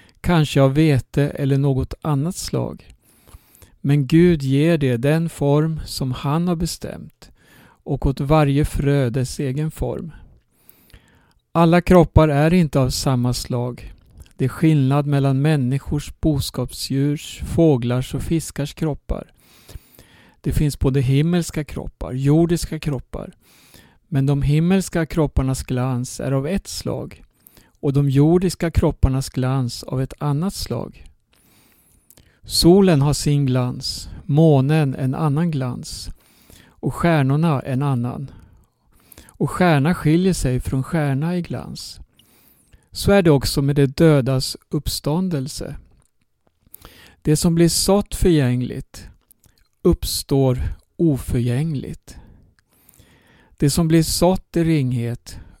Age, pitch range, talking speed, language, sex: 60-79, 130-160 Hz, 115 wpm, Swedish, male